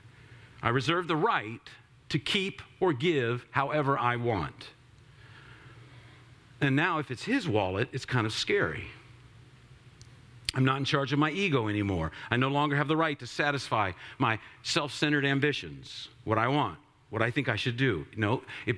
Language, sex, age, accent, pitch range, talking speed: English, male, 50-69, American, 115-145 Hz, 165 wpm